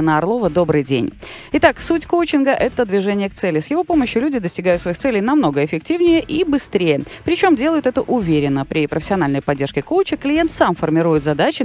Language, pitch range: Russian, 155-255 Hz